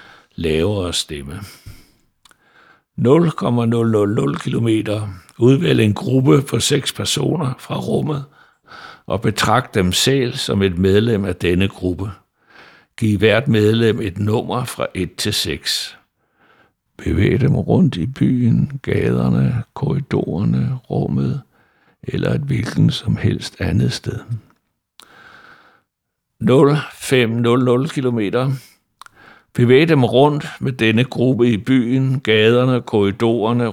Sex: male